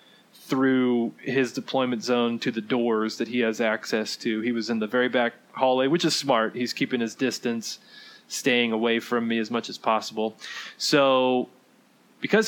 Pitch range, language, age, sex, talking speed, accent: 120-140 Hz, English, 20-39, male, 175 wpm, American